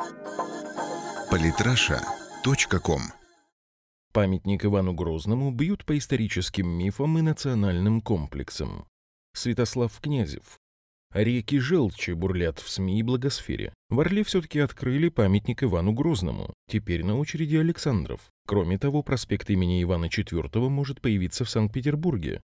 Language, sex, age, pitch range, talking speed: Russian, male, 30-49, 90-135 Hz, 105 wpm